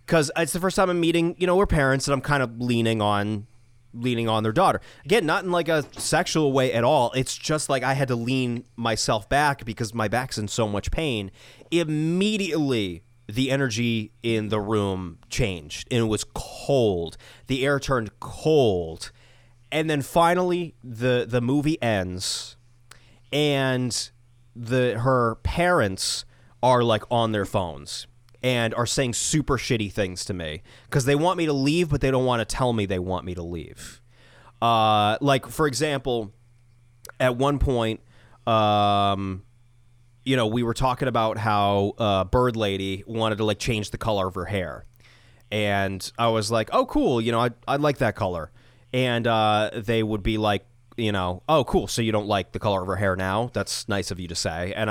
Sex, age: male, 30-49